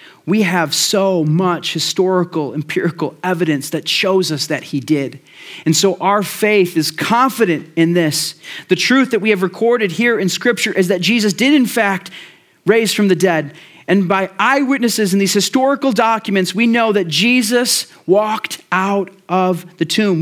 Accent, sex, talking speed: American, male, 165 wpm